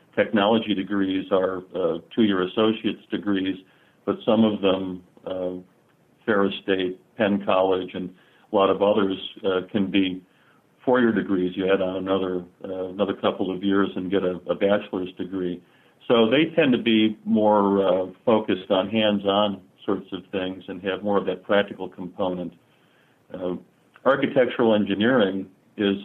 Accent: American